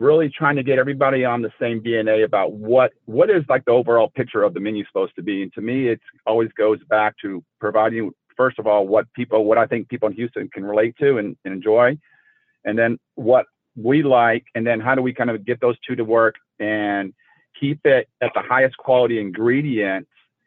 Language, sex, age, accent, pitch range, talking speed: English, male, 50-69, American, 105-125 Hz, 215 wpm